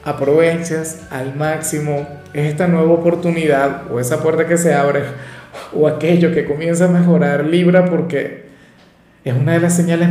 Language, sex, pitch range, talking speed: Spanish, male, 150-180 Hz, 150 wpm